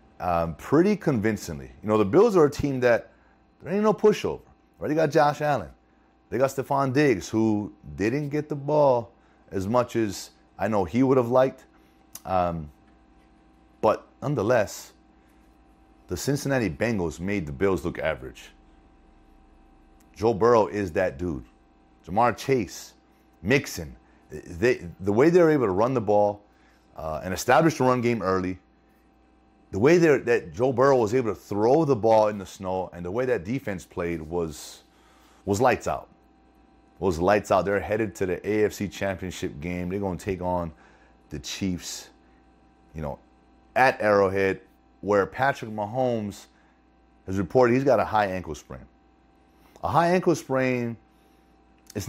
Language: English